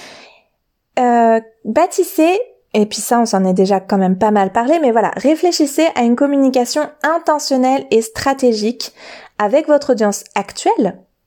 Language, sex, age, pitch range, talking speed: French, female, 20-39, 210-275 Hz, 145 wpm